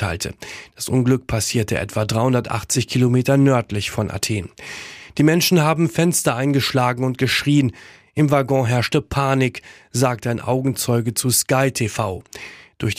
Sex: male